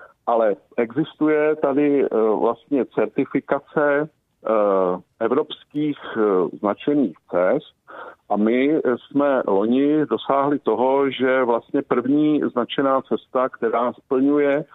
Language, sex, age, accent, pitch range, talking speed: Czech, male, 50-69, native, 110-140 Hz, 85 wpm